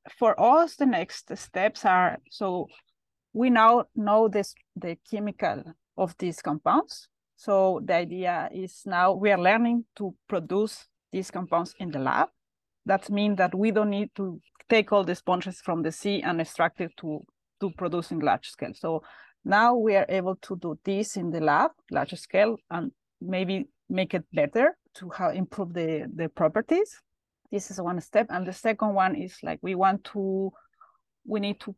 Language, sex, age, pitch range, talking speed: English, female, 30-49, 170-205 Hz, 180 wpm